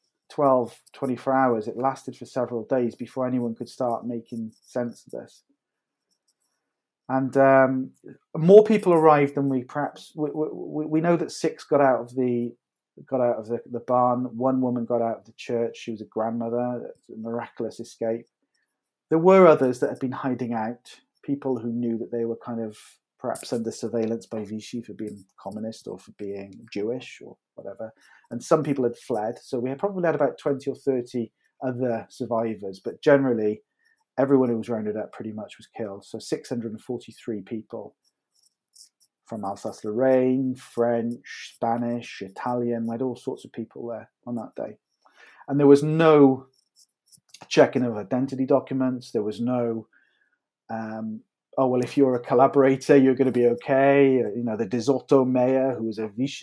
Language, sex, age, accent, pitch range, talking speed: English, male, 40-59, British, 115-135 Hz, 170 wpm